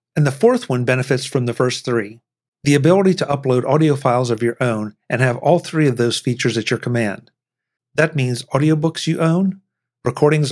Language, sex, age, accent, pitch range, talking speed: English, male, 50-69, American, 120-155 Hz, 195 wpm